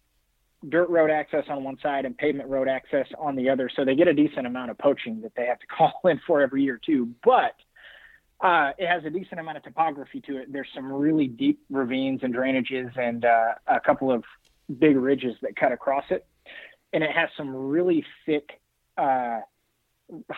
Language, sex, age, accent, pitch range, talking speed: English, male, 20-39, American, 130-160 Hz, 195 wpm